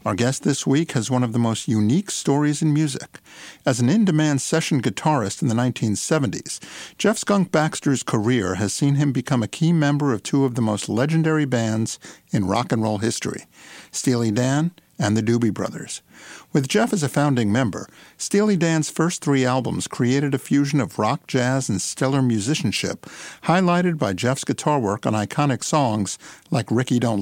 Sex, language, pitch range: male, English, 115-155 Hz